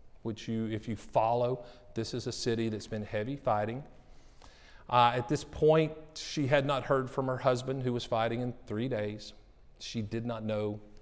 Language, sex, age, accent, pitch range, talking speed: English, male, 50-69, American, 105-130 Hz, 185 wpm